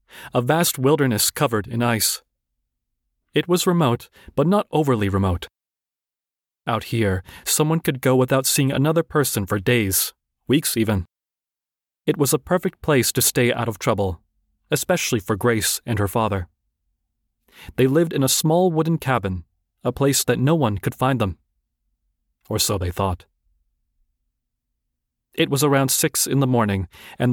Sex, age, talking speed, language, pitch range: male, 30-49, 150 wpm, English, 95-140 Hz